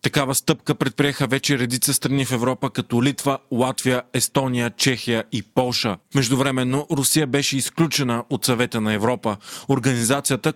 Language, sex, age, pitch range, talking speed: Bulgarian, male, 30-49, 125-145 Hz, 135 wpm